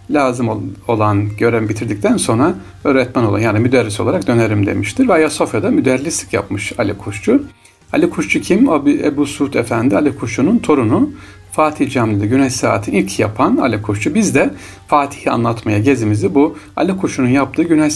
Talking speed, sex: 150 wpm, male